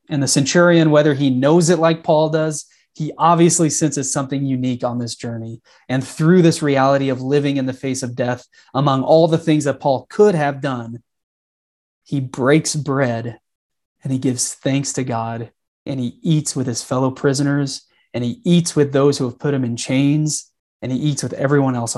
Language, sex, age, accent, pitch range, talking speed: English, male, 30-49, American, 125-150 Hz, 195 wpm